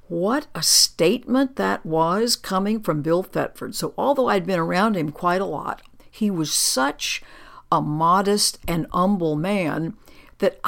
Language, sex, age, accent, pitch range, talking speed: English, female, 60-79, American, 160-215 Hz, 150 wpm